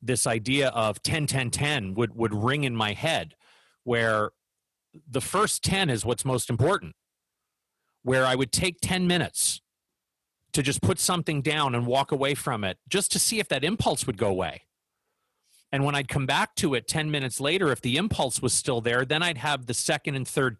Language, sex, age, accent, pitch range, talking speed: English, male, 40-59, American, 125-160 Hz, 200 wpm